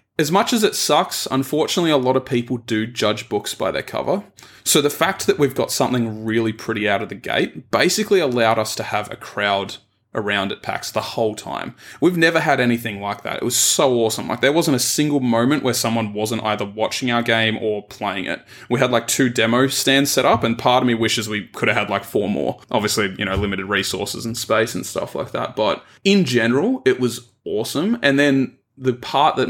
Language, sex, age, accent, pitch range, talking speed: English, male, 20-39, Australian, 110-140 Hz, 225 wpm